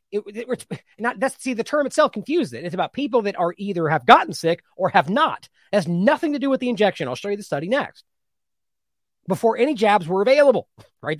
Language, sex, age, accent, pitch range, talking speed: English, male, 30-49, American, 175-260 Hz, 205 wpm